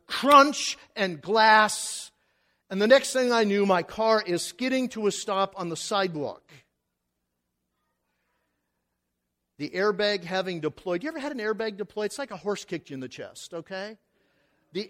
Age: 50-69